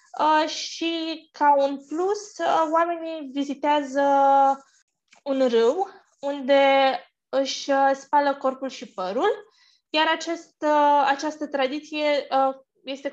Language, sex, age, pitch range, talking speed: Romanian, female, 20-39, 255-300 Hz, 85 wpm